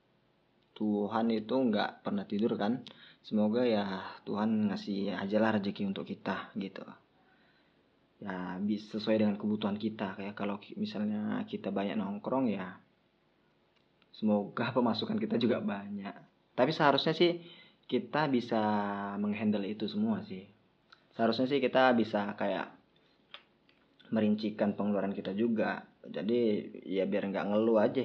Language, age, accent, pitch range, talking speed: Indonesian, 20-39, native, 105-165 Hz, 120 wpm